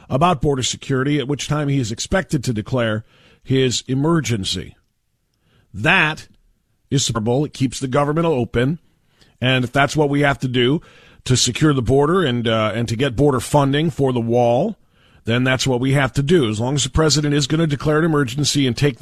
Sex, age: male, 40-59